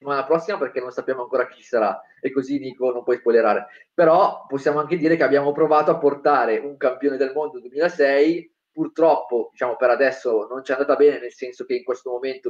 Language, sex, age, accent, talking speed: Italian, male, 20-39, native, 205 wpm